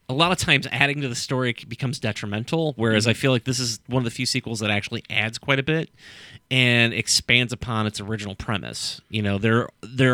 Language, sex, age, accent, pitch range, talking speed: English, male, 30-49, American, 105-130 Hz, 220 wpm